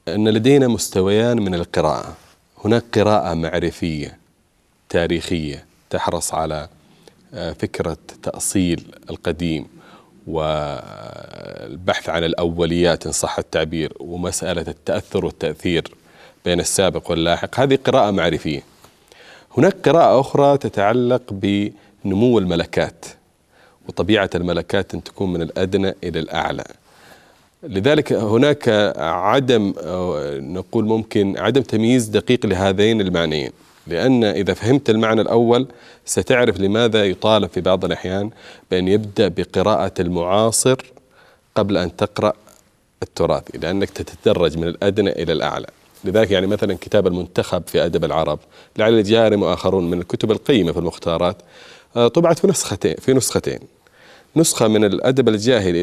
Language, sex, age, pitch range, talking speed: Arabic, male, 40-59, 90-115 Hz, 110 wpm